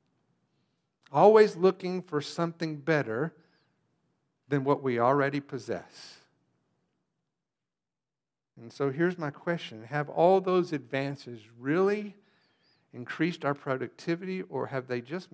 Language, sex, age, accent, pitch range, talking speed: English, male, 50-69, American, 140-195 Hz, 105 wpm